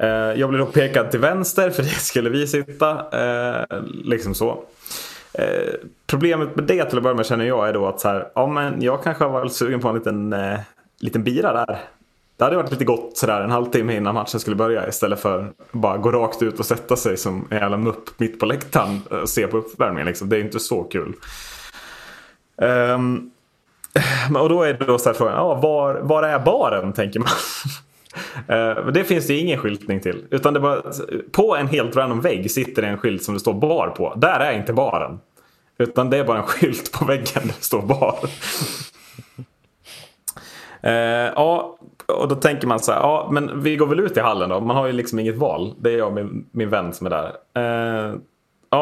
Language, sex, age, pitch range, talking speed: Swedish, male, 20-39, 110-145 Hz, 210 wpm